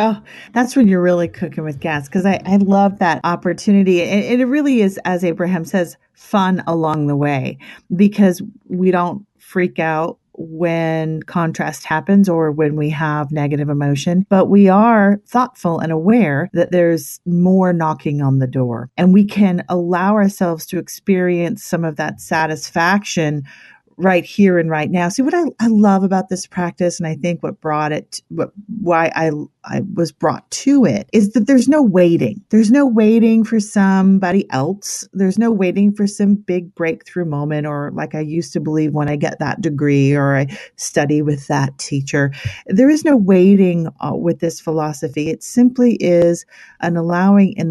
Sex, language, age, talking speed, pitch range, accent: female, English, 40-59, 175 wpm, 160-200 Hz, American